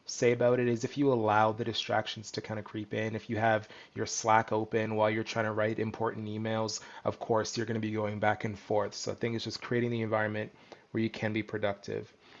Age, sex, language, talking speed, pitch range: 20-39, male, English, 240 wpm, 110-125 Hz